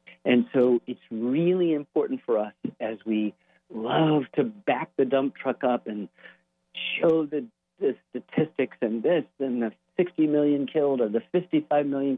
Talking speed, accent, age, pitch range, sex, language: 160 wpm, American, 50-69, 110-145 Hz, male, English